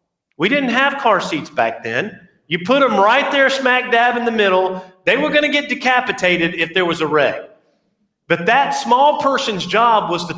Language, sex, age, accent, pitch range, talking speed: English, male, 40-59, American, 130-205 Hz, 200 wpm